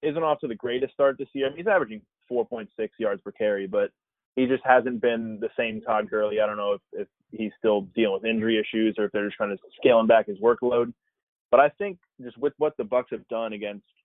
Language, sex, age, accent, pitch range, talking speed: English, male, 20-39, American, 110-150 Hz, 245 wpm